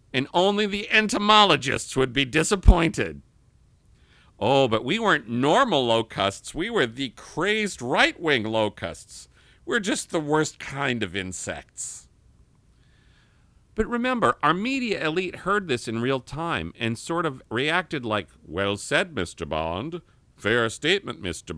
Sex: male